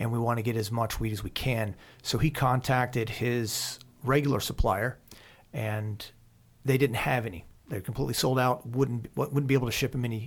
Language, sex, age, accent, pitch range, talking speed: English, male, 40-59, American, 115-140 Hz, 195 wpm